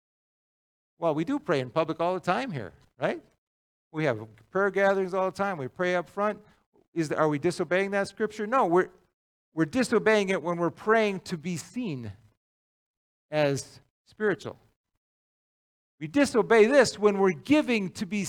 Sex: male